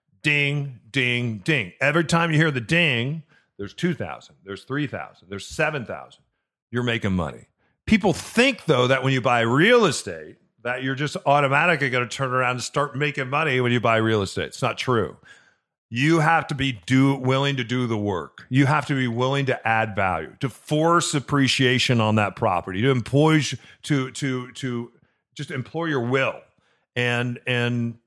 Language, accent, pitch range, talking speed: English, American, 120-155 Hz, 175 wpm